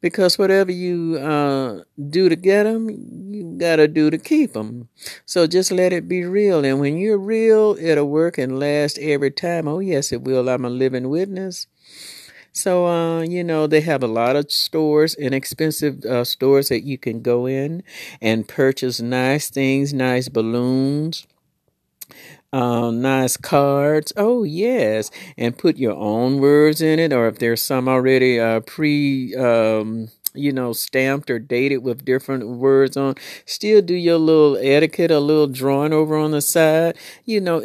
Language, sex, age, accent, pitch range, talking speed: English, male, 50-69, American, 125-160 Hz, 165 wpm